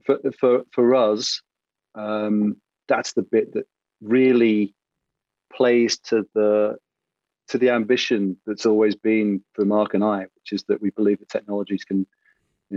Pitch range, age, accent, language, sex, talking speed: 100-110 Hz, 30-49, British, English, male, 150 wpm